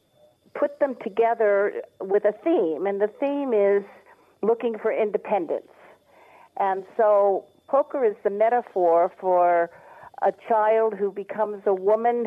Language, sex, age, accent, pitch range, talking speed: English, female, 50-69, American, 195-240 Hz, 125 wpm